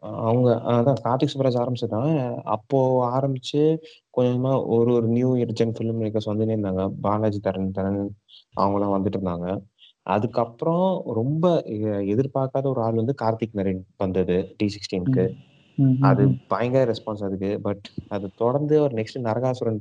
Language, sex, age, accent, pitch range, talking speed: Tamil, male, 20-39, native, 105-130 Hz, 100 wpm